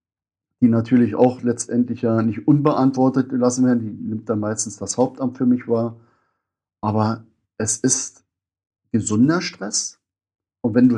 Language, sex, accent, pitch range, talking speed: German, male, German, 110-125 Hz, 140 wpm